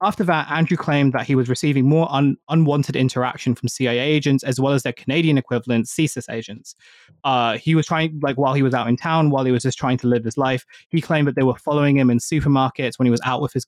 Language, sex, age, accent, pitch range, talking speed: English, male, 20-39, British, 125-155 Hz, 250 wpm